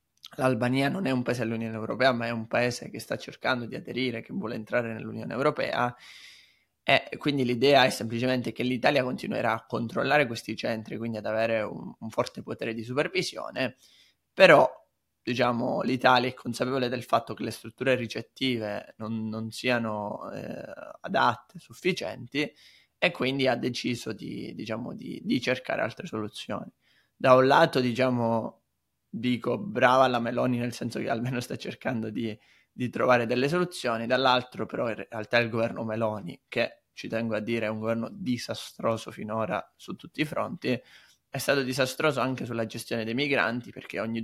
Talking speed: 165 wpm